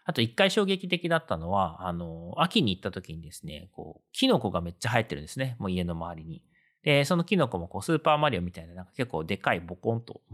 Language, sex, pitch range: Japanese, male, 90-140 Hz